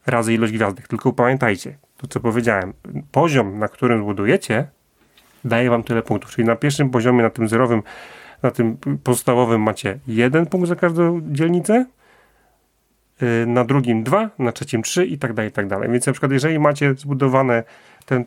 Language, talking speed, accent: Polish, 170 wpm, native